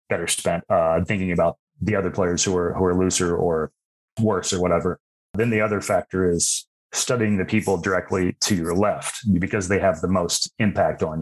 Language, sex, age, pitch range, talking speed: English, male, 30-49, 90-100 Hz, 195 wpm